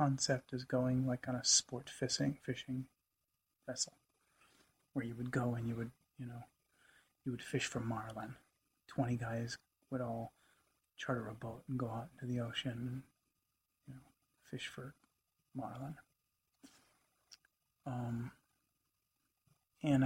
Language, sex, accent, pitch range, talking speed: English, male, American, 125-135 Hz, 135 wpm